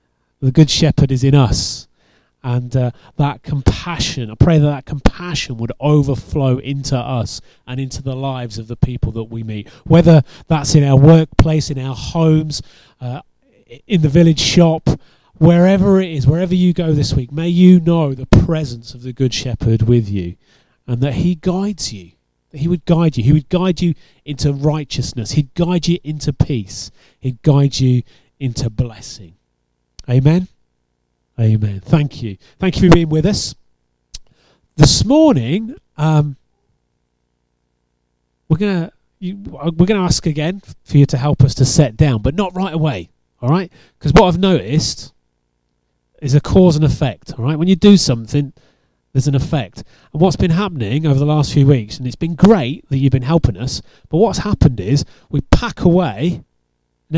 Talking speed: 175 wpm